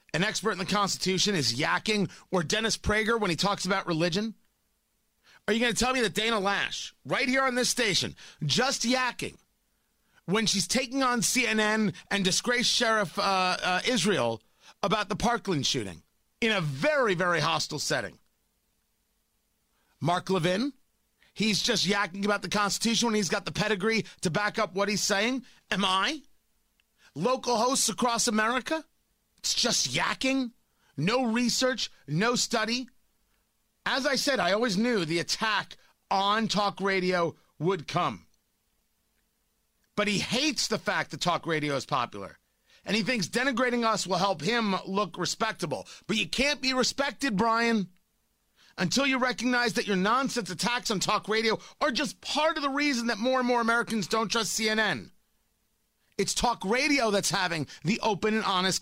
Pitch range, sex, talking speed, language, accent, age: 180-235 Hz, male, 160 wpm, English, American, 30-49